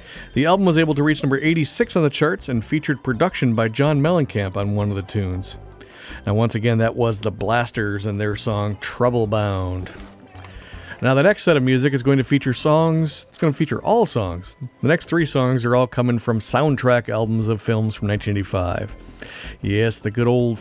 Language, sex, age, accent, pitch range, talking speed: English, male, 50-69, American, 105-140 Hz, 200 wpm